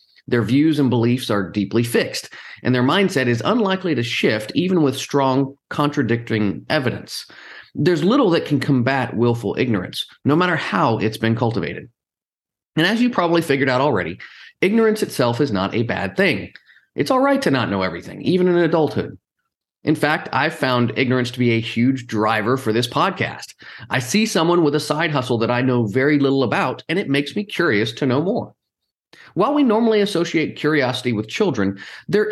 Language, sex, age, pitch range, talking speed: English, male, 40-59, 115-165 Hz, 180 wpm